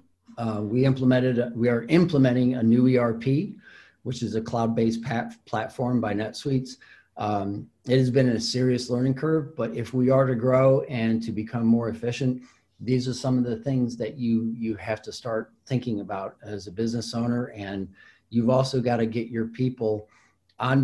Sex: male